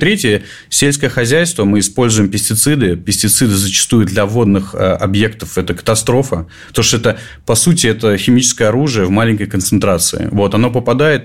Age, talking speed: 30-49, 150 wpm